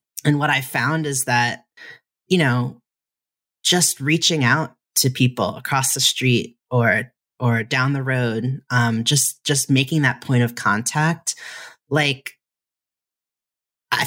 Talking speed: 130 wpm